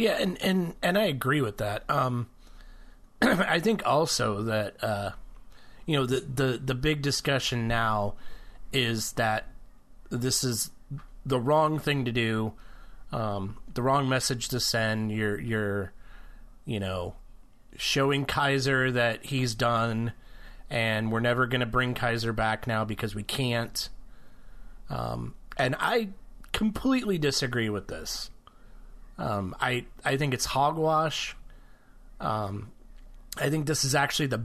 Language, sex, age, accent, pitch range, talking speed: English, male, 30-49, American, 115-155 Hz, 135 wpm